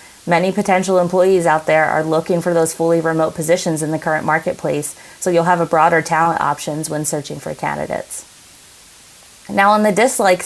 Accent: American